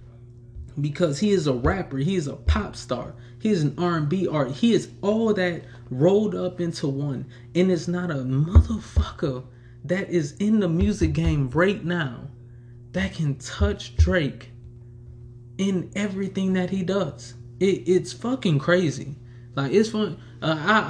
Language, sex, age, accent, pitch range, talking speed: English, male, 20-39, American, 120-165 Hz, 150 wpm